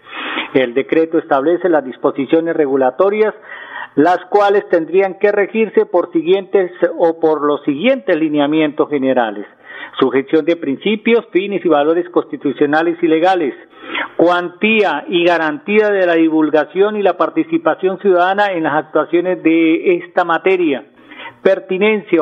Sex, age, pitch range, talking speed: male, 40-59, 155-205 Hz, 120 wpm